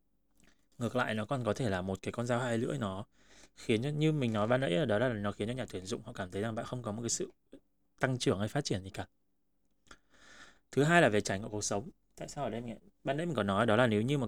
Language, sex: Vietnamese, male